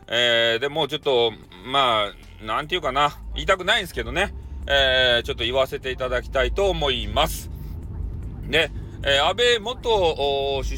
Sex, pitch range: male, 120-175 Hz